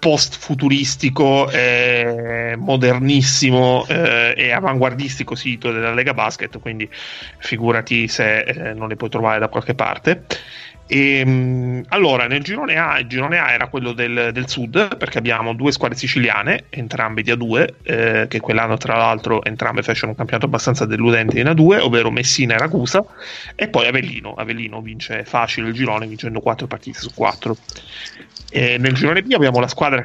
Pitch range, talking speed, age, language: 110-135 Hz, 160 wpm, 30-49, Italian